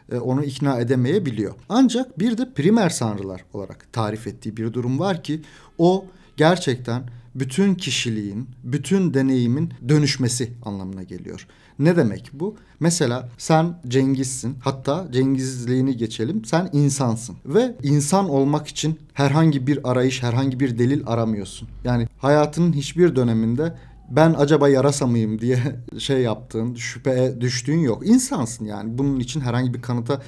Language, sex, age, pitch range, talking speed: Turkish, male, 40-59, 120-155 Hz, 130 wpm